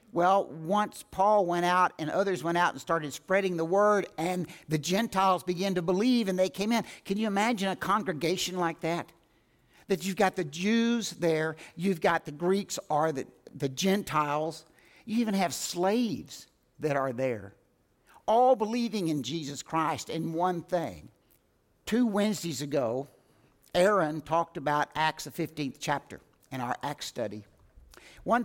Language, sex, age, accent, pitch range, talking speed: English, male, 60-79, American, 160-205 Hz, 160 wpm